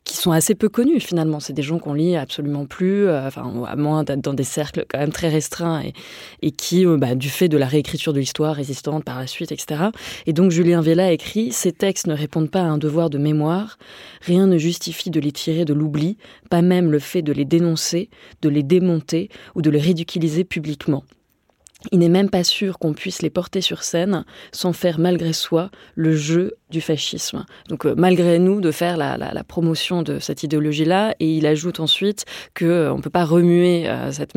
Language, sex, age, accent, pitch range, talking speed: French, female, 20-39, French, 155-180 Hz, 220 wpm